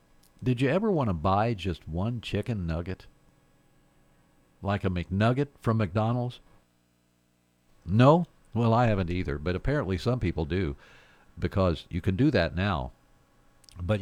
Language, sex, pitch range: English, male, 85-120 Hz